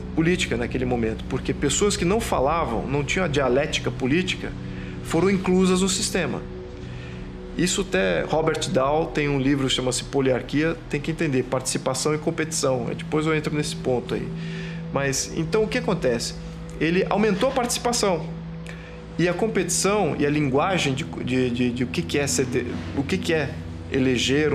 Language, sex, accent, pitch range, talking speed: Portuguese, male, Brazilian, 125-175 Hz, 170 wpm